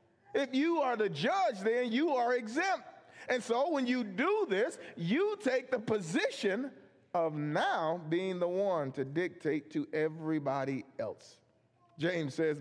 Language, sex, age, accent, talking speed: English, male, 40-59, American, 150 wpm